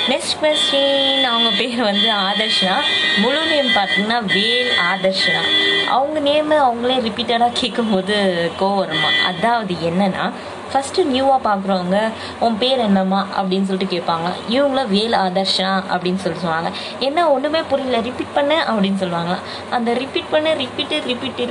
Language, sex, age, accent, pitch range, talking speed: Tamil, female, 20-39, native, 195-250 Hz, 130 wpm